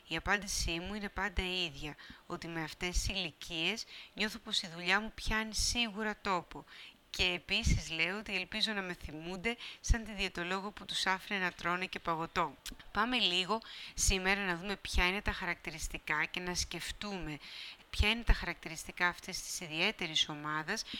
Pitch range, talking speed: 165-215 Hz, 165 wpm